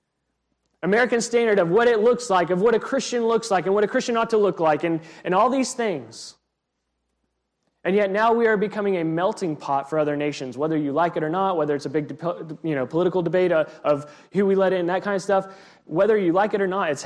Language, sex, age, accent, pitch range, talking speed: English, male, 20-39, American, 150-200 Hz, 240 wpm